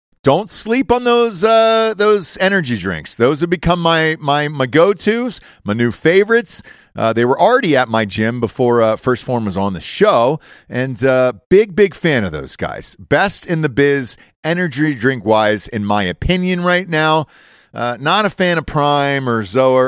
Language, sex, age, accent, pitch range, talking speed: English, male, 40-59, American, 115-165 Hz, 180 wpm